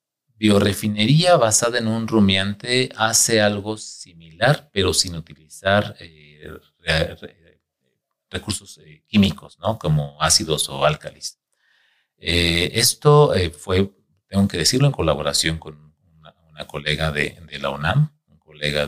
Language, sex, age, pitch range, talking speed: Spanish, male, 40-59, 80-105 Hz, 130 wpm